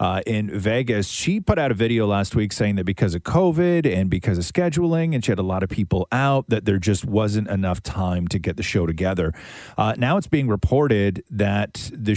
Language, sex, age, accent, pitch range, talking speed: English, male, 40-59, American, 95-120 Hz, 220 wpm